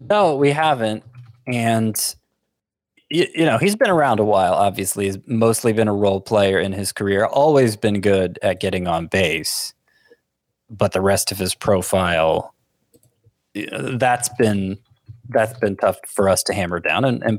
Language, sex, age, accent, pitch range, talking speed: English, male, 20-39, American, 100-140 Hz, 170 wpm